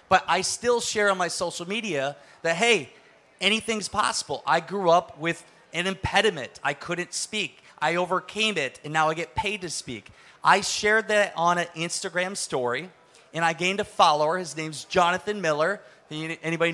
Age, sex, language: 30-49, male, English